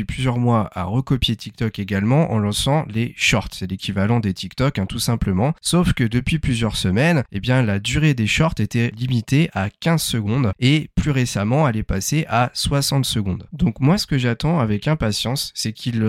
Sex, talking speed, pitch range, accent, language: male, 190 wpm, 110-140 Hz, French, French